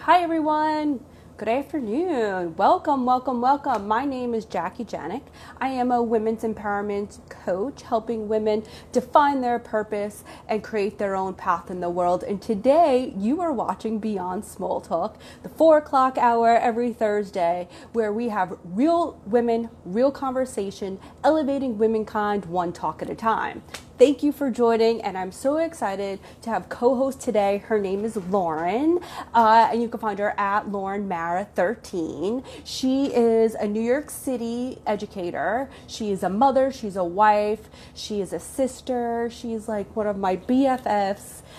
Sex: female